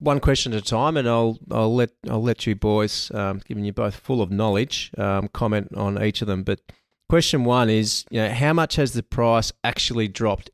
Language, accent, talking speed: English, Australian, 220 wpm